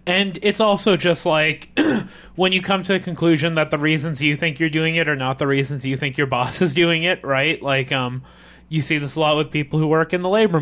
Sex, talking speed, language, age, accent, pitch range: male, 255 wpm, English, 20-39, American, 135-165 Hz